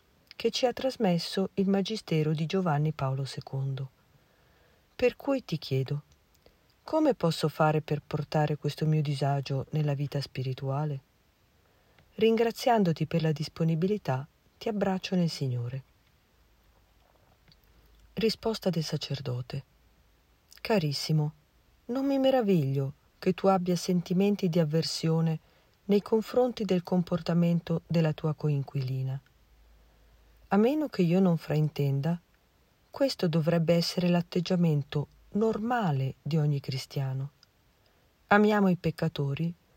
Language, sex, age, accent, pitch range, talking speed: Italian, female, 40-59, native, 140-195 Hz, 105 wpm